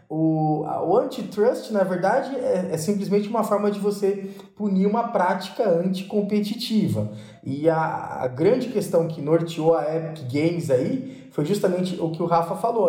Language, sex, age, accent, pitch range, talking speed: Portuguese, male, 20-39, Brazilian, 140-195 Hz, 155 wpm